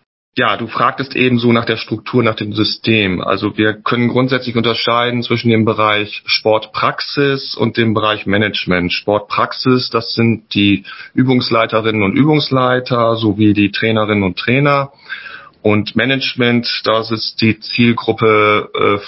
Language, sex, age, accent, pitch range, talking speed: German, male, 40-59, German, 100-120 Hz, 135 wpm